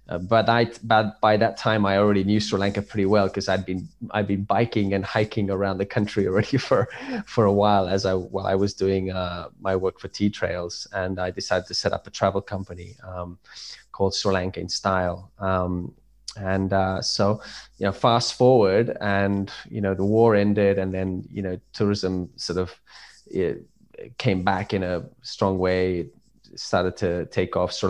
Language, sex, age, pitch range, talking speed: English, male, 20-39, 90-105 Hz, 200 wpm